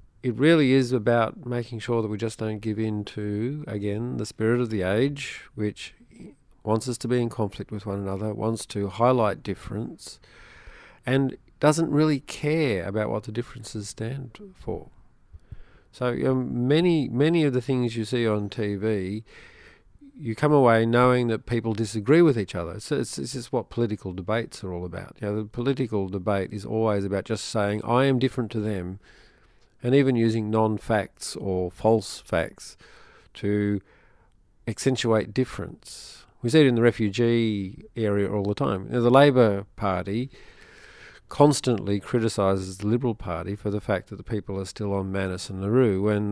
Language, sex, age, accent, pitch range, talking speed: English, male, 50-69, Australian, 100-125 Hz, 165 wpm